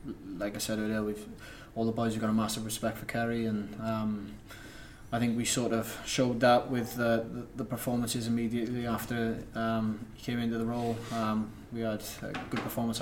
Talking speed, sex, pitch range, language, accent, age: 195 wpm, male, 110-120 Hz, English, British, 20-39